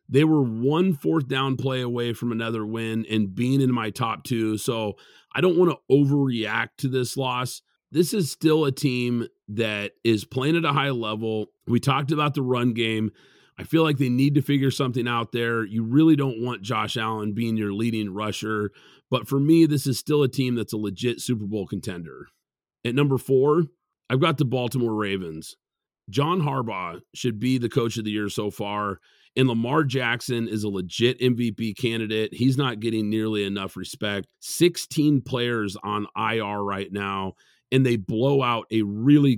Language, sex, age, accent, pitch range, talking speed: English, male, 40-59, American, 110-135 Hz, 185 wpm